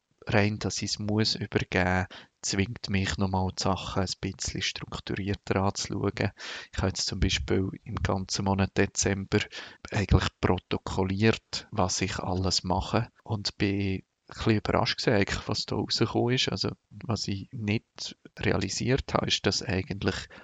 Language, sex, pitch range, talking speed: German, male, 95-110 Hz, 145 wpm